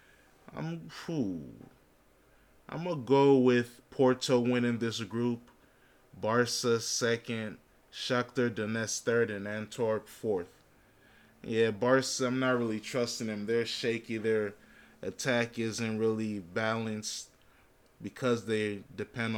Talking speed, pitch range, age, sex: 105 wpm, 110-130 Hz, 20-39, male